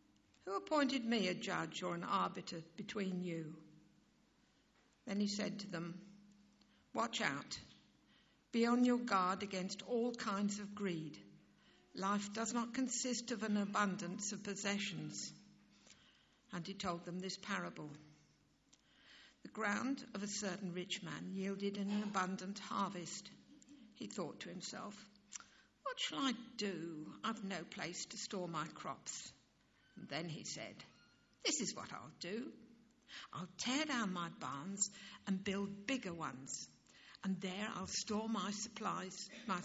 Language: English